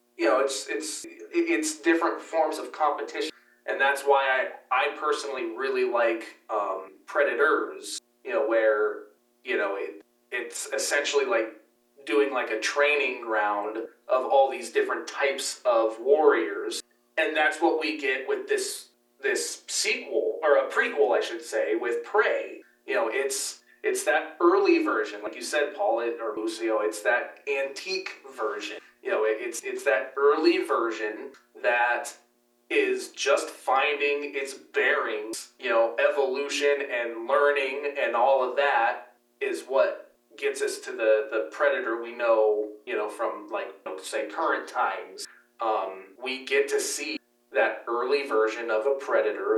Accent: American